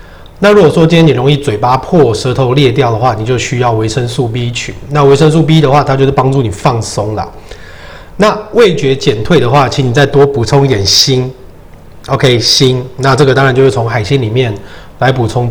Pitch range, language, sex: 110-145 Hz, Chinese, male